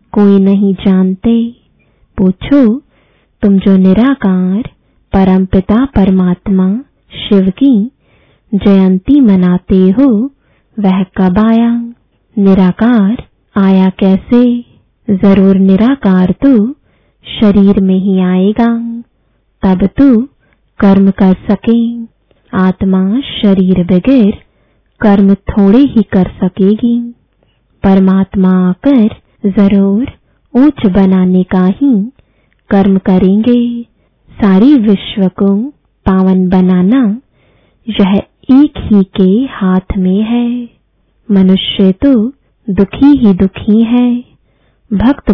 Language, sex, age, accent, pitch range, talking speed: English, female, 20-39, Indian, 190-235 Hz, 90 wpm